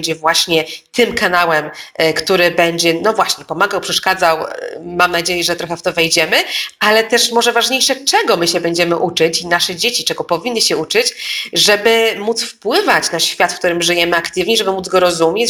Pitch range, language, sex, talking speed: 175-220 Hz, Polish, female, 180 wpm